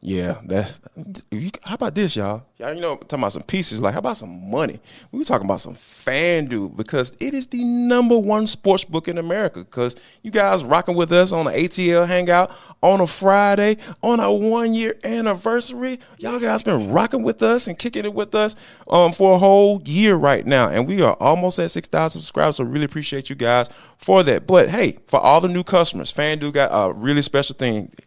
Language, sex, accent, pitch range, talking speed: English, male, American, 135-200 Hz, 210 wpm